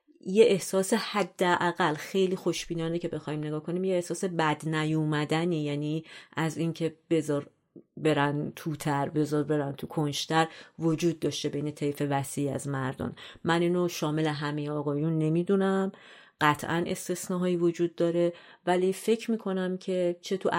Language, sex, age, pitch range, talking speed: Persian, female, 30-49, 145-170 Hz, 145 wpm